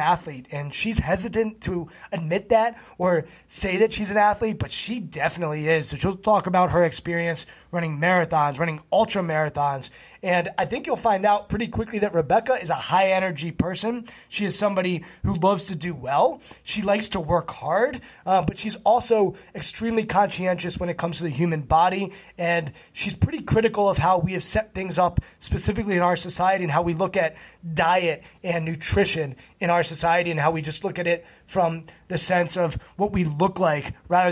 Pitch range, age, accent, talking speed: 165-195 Hz, 20-39, American, 190 wpm